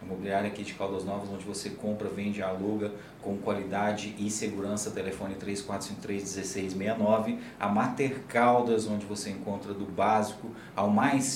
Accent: Brazilian